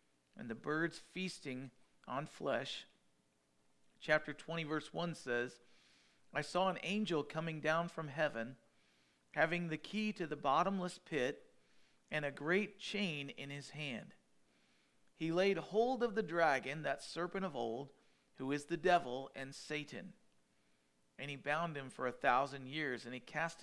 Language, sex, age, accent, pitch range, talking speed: English, male, 40-59, American, 115-175 Hz, 150 wpm